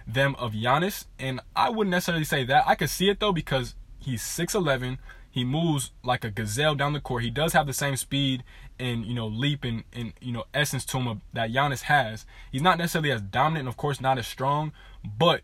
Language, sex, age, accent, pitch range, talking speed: English, male, 20-39, American, 125-150 Hz, 225 wpm